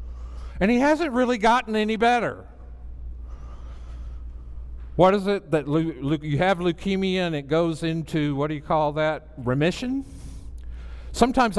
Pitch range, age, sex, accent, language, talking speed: 150-220 Hz, 60-79, male, American, English, 140 wpm